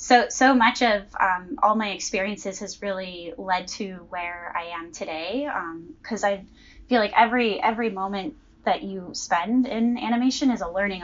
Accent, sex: American, female